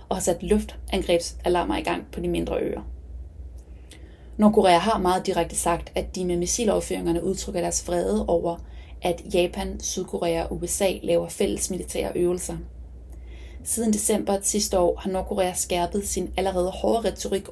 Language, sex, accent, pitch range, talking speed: Danish, female, native, 165-200 Hz, 145 wpm